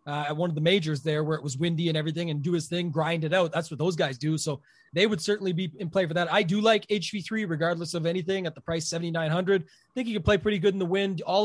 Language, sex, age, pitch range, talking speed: English, male, 30-49, 165-205 Hz, 295 wpm